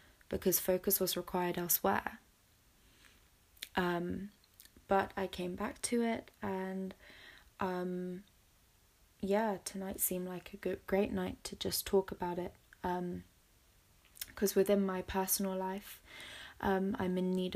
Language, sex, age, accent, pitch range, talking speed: English, female, 20-39, British, 175-195 Hz, 125 wpm